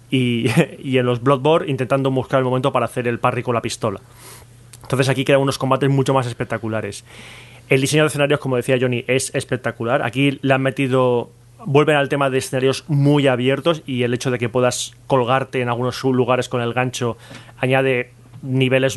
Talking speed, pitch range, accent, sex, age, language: 185 wpm, 120-150 Hz, Spanish, male, 30-49, Spanish